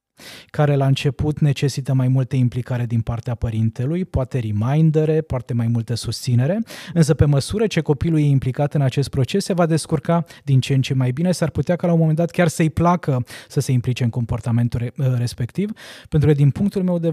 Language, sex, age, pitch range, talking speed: Romanian, male, 20-39, 130-165 Hz, 200 wpm